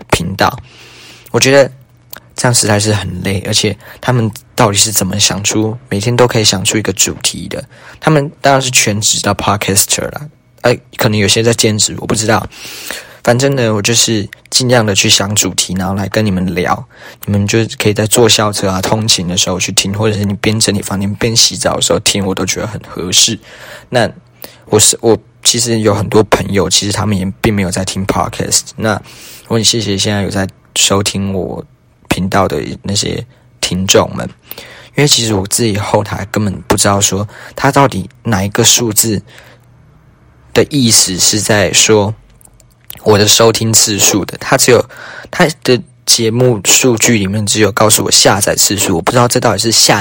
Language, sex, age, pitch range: Chinese, male, 20-39, 100-120 Hz